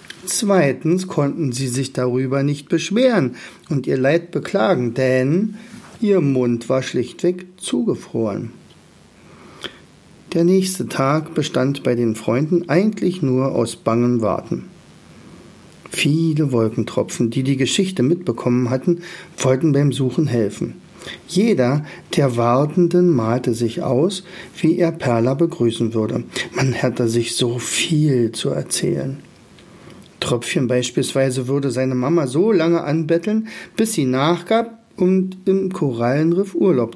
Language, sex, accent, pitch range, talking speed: German, male, German, 125-175 Hz, 120 wpm